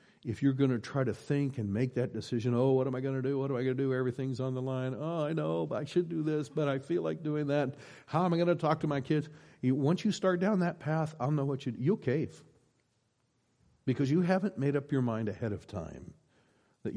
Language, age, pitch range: English, 60-79, 110-150 Hz